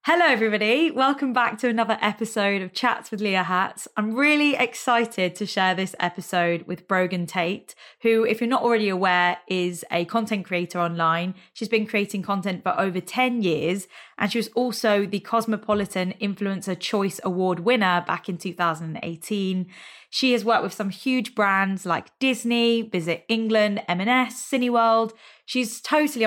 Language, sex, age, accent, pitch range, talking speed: English, female, 20-39, British, 180-230 Hz, 160 wpm